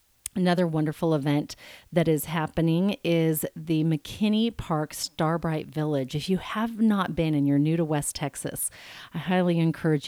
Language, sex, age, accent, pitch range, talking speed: English, female, 40-59, American, 145-180 Hz, 155 wpm